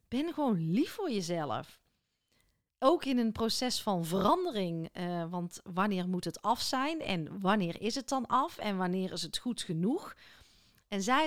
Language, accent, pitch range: Dutch, Dutch, 190-255 Hz